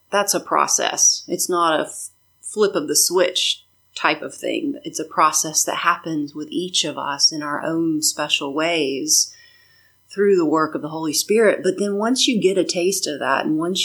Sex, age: female, 30-49